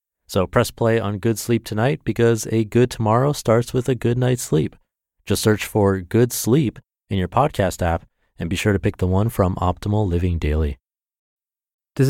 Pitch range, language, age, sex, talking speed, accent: 90-115 Hz, English, 30-49, male, 190 wpm, American